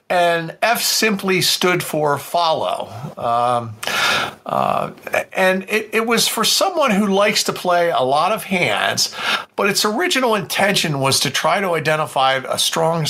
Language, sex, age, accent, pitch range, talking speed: English, male, 50-69, American, 145-190 Hz, 150 wpm